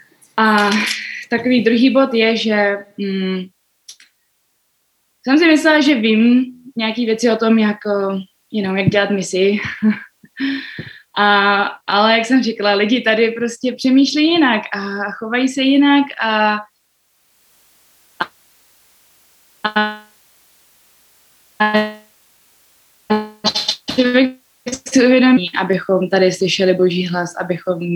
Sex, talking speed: female, 95 wpm